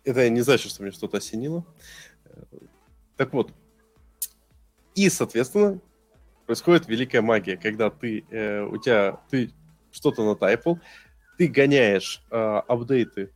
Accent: native